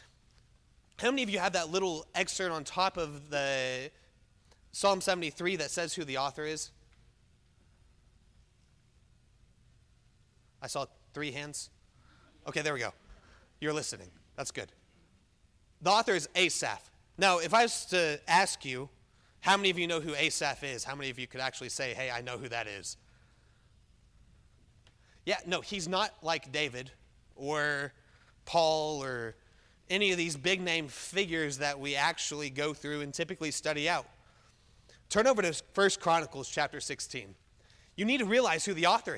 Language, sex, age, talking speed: English, male, 30-49, 155 wpm